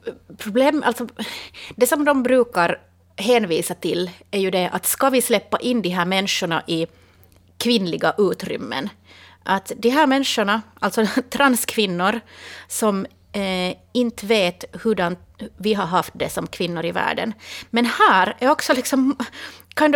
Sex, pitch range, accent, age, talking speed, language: female, 180-235 Hz, Swedish, 30-49, 145 wpm, Finnish